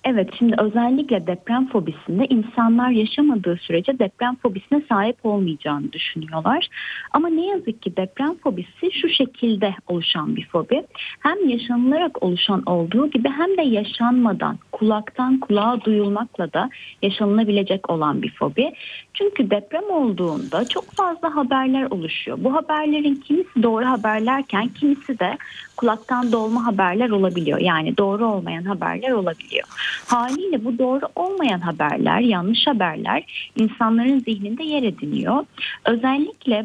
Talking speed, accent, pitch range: 125 wpm, native, 190-265 Hz